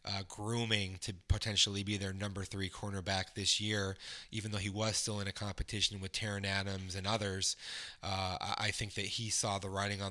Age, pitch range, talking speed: 20-39, 95-110 Hz, 195 wpm